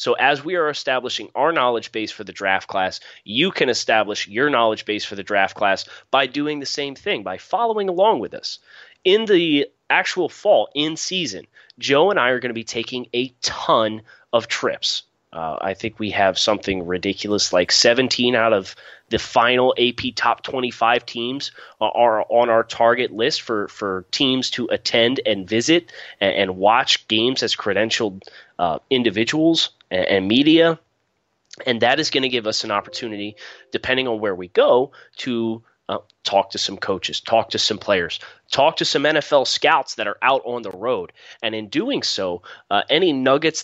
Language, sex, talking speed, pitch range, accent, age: English, male, 180 wpm, 110-135 Hz, American, 30-49